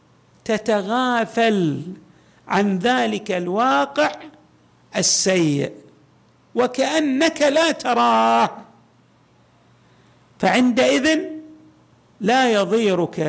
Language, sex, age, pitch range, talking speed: Arabic, male, 50-69, 195-270 Hz, 50 wpm